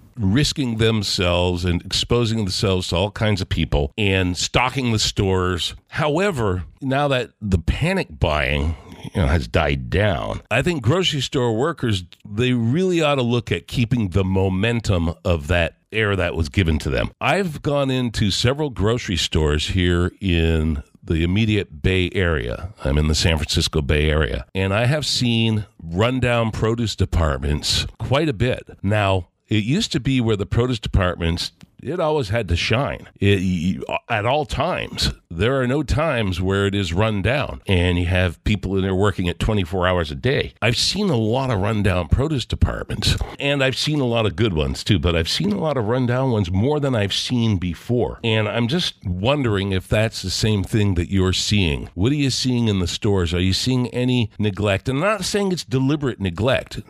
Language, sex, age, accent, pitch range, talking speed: English, male, 50-69, American, 90-120 Hz, 185 wpm